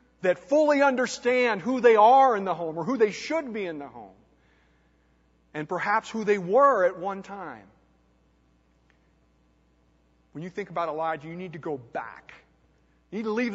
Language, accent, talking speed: English, American, 175 wpm